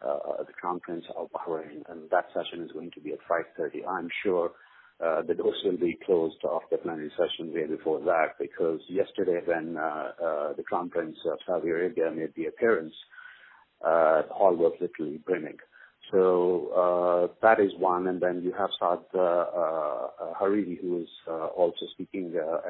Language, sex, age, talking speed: English, male, 50-69, 175 wpm